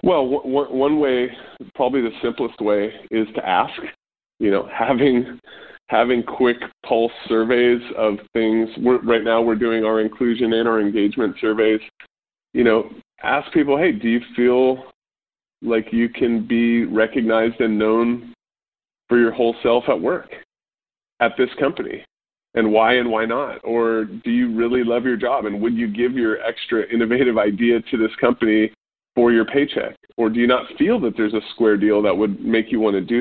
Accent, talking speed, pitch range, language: American, 180 wpm, 110-125 Hz, English